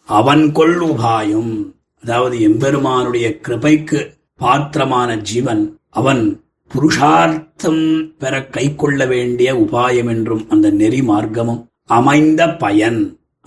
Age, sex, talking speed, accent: 30-49, male, 90 wpm, native